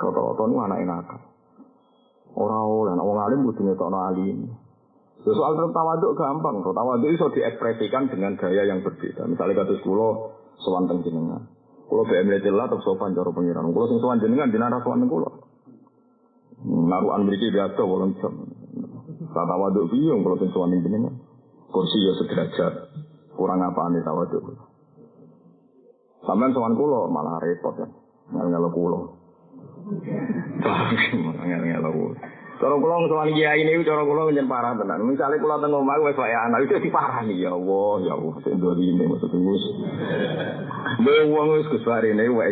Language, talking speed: Indonesian, 125 wpm